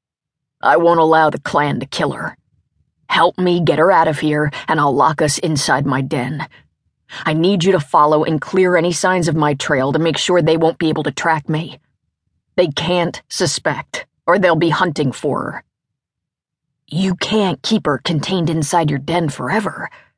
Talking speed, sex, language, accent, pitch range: 185 wpm, female, English, American, 150-185 Hz